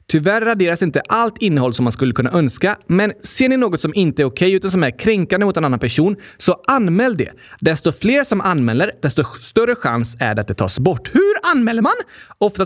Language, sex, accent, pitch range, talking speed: Swedish, male, native, 135-210 Hz, 220 wpm